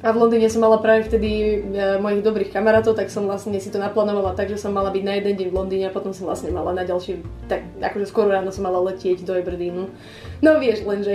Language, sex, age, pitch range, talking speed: Slovak, female, 20-39, 215-275 Hz, 255 wpm